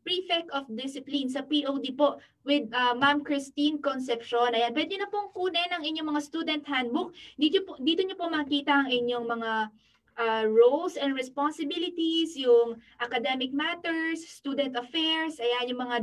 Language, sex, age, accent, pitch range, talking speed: Filipino, female, 20-39, native, 260-320 Hz, 155 wpm